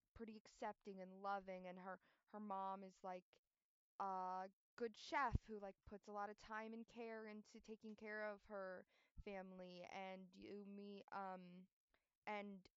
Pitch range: 190-215 Hz